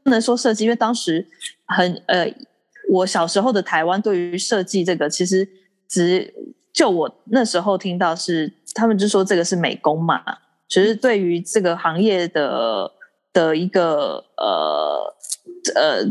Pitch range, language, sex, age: 165-230 Hz, Chinese, female, 20-39